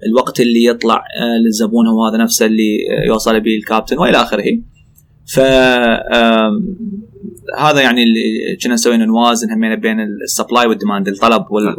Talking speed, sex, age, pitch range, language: 120 wpm, male, 20-39, 110-135 Hz, Arabic